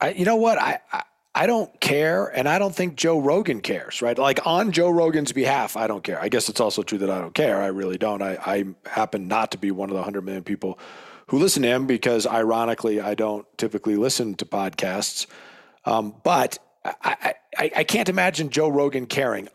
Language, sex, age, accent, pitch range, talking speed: English, male, 40-59, American, 110-150 Hz, 210 wpm